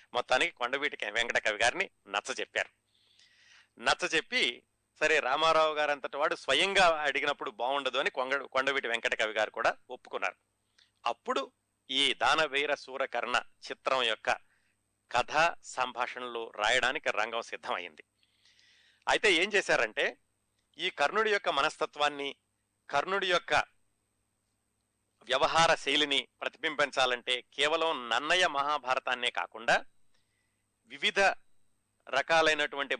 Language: Telugu